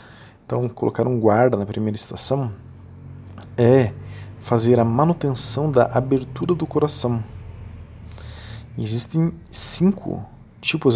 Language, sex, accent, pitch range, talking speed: Portuguese, male, Brazilian, 110-125 Hz, 100 wpm